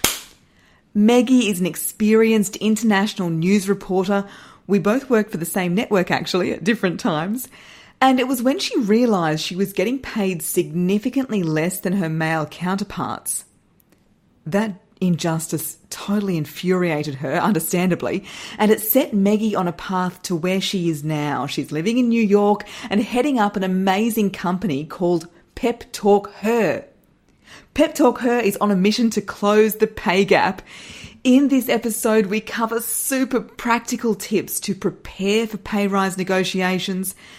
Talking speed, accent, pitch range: 150 wpm, Australian, 180-220 Hz